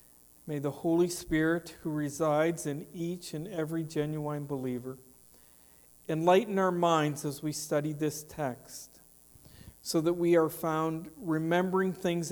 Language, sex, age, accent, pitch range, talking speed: English, male, 50-69, American, 135-170 Hz, 130 wpm